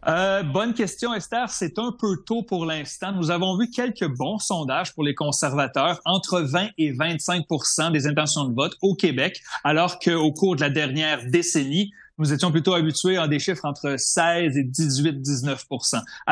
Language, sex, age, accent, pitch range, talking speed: French, male, 30-49, Canadian, 145-180 Hz, 175 wpm